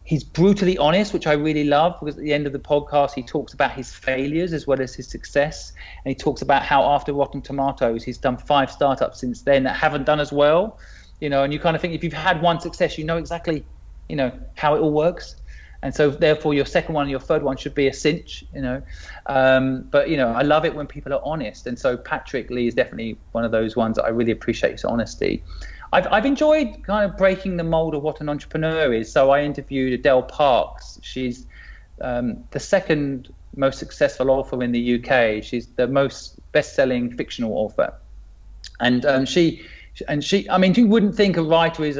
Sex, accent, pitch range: male, British, 125-155 Hz